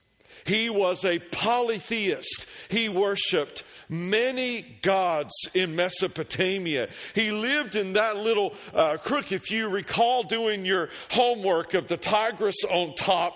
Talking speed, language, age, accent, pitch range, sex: 125 wpm, English, 50-69, American, 185-240 Hz, male